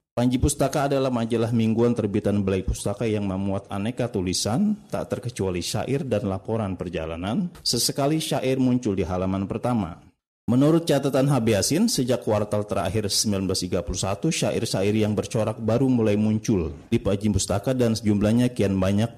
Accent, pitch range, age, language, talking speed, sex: native, 100-125 Hz, 30-49, Indonesian, 140 wpm, male